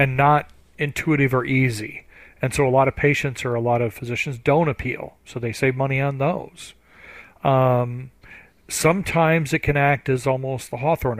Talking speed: 175 wpm